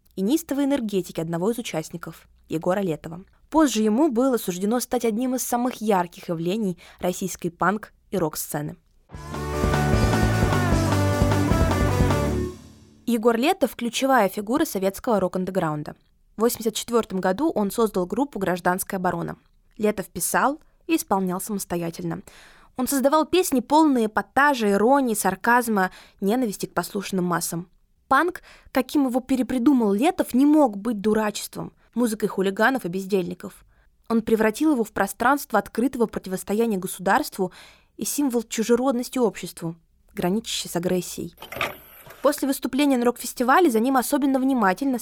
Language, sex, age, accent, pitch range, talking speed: Russian, female, 20-39, native, 185-250 Hz, 115 wpm